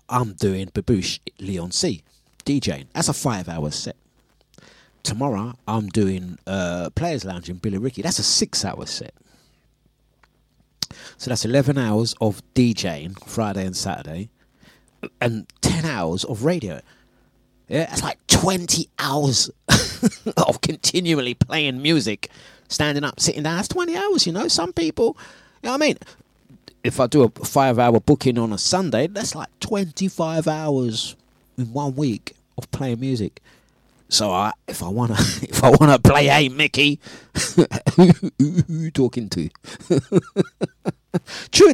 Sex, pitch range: male, 110-155 Hz